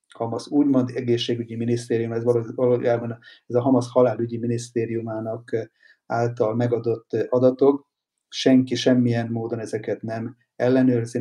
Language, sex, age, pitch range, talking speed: Hungarian, male, 30-49, 115-130 Hz, 105 wpm